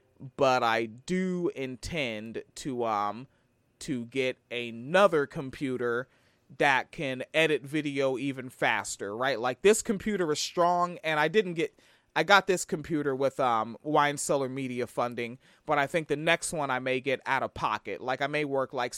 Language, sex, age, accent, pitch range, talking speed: English, male, 30-49, American, 130-165 Hz, 170 wpm